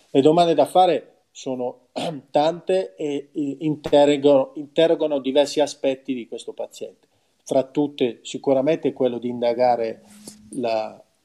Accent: native